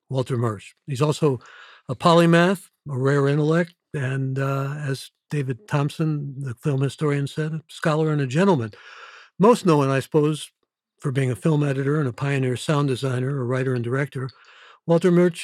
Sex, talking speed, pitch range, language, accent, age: male, 165 wpm, 130-160 Hz, English, American, 60-79